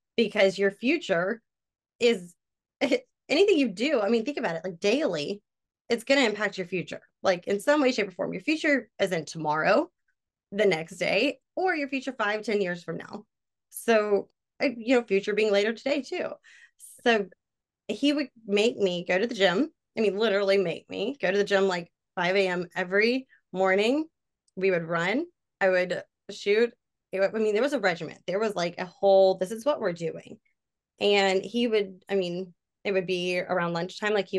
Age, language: 20-39, English